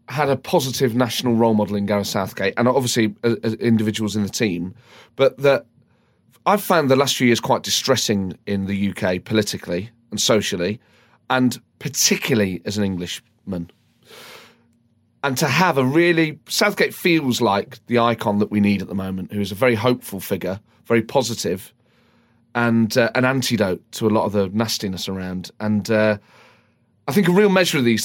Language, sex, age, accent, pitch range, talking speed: English, male, 30-49, British, 105-130 Hz, 175 wpm